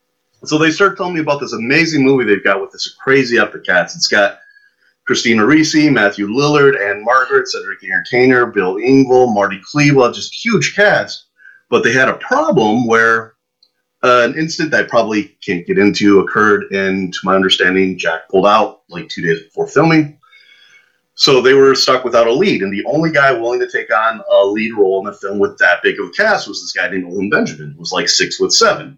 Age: 30-49